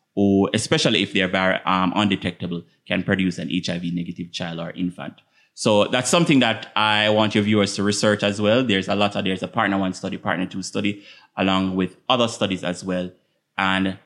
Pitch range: 95-110 Hz